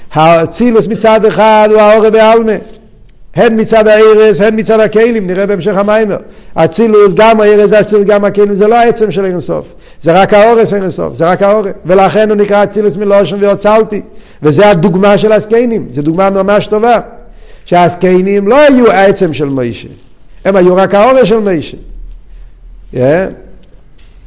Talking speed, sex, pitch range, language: 105 wpm, male, 185-215 Hz, Hebrew